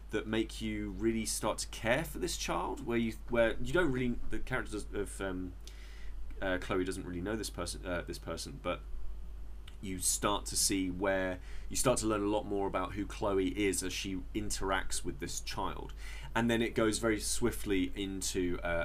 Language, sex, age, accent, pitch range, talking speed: English, male, 20-39, British, 85-115 Hz, 195 wpm